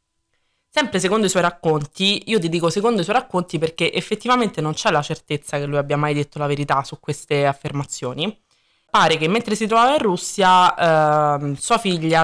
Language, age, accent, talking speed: Italian, 20-39, native, 180 wpm